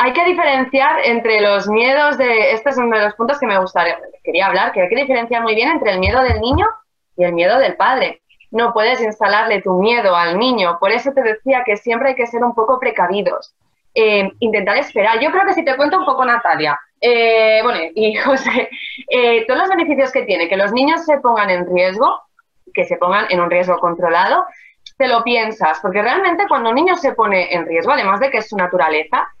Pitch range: 205-280 Hz